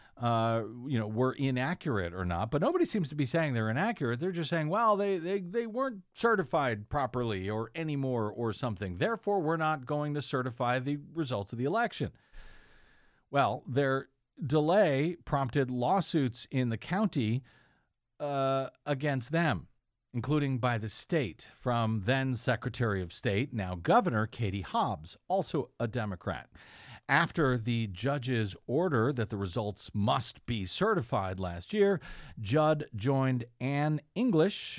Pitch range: 105-145 Hz